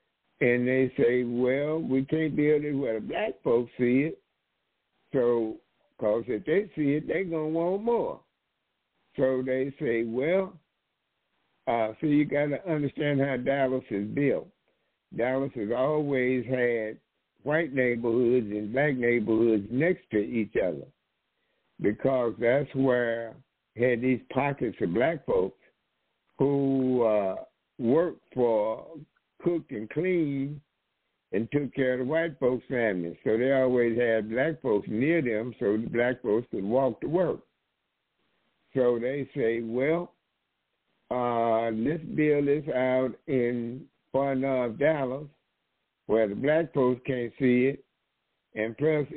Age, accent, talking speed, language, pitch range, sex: 60-79, American, 140 wpm, English, 115-140 Hz, male